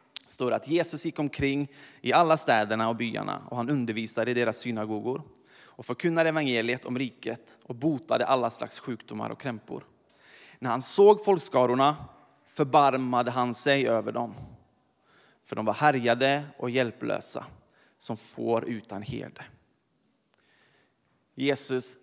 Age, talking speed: 20-39, 130 wpm